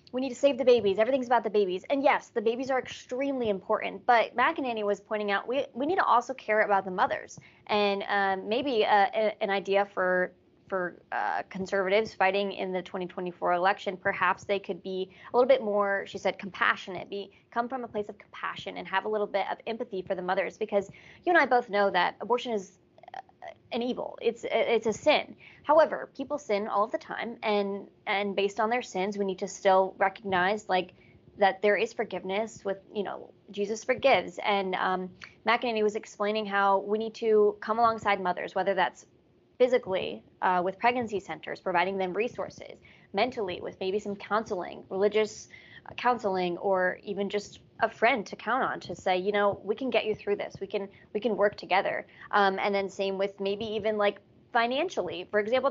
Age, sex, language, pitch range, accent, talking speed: 20-39, female, English, 195-240 Hz, American, 195 wpm